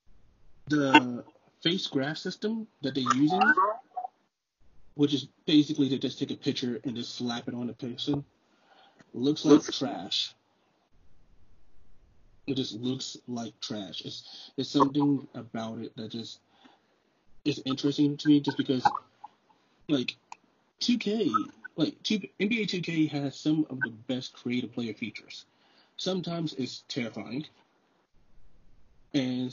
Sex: male